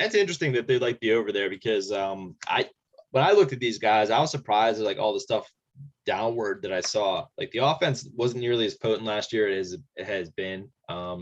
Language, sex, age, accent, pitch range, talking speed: English, male, 20-39, American, 110-150 Hz, 230 wpm